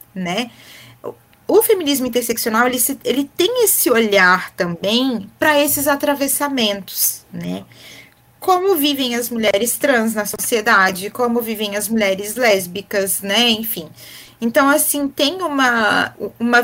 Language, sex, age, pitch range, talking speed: Portuguese, female, 20-39, 190-280 Hz, 120 wpm